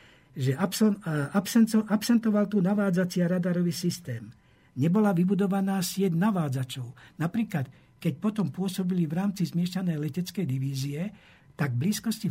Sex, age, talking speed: male, 60-79, 105 wpm